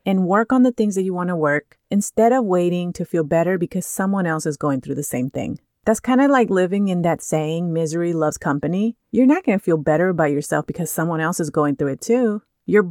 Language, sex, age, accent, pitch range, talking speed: English, female, 30-49, American, 165-220 Hz, 245 wpm